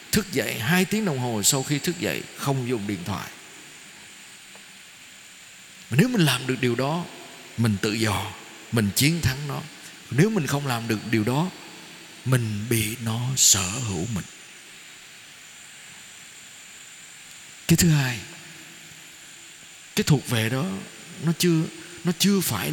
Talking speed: 135 wpm